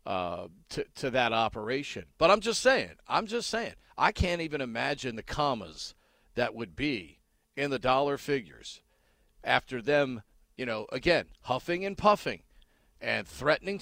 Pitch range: 130-180 Hz